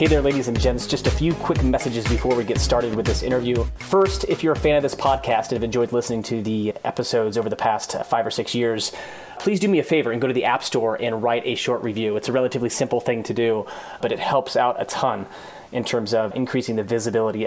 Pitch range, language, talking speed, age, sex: 115-135 Hz, English, 255 wpm, 30-49, male